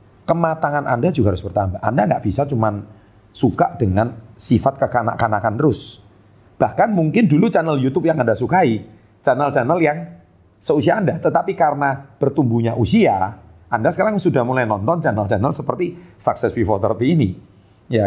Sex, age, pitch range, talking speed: male, 30-49, 105-140 Hz, 140 wpm